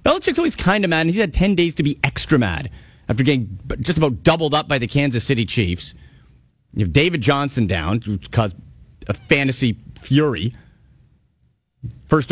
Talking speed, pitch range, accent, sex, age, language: 175 wpm, 115-145 Hz, American, male, 40-59, English